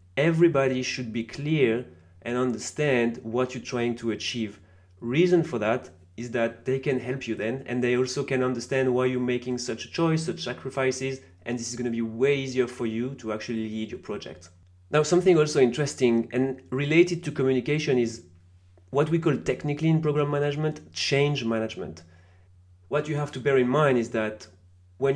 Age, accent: 30-49, French